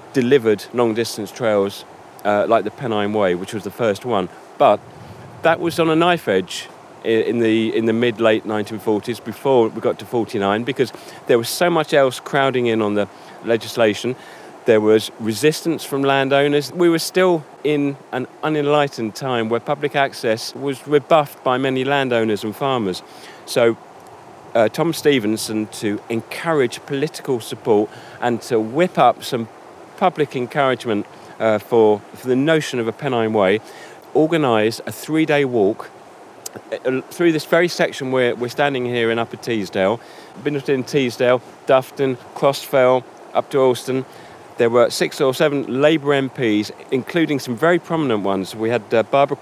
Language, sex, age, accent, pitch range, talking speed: English, male, 40-59, British, 115-145 Hz, 155 wpm